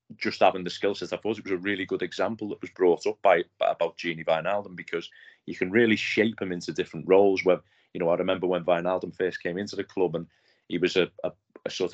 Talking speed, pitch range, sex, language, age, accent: 245 wpm, 90-105 Hz, male, English, 30-49, British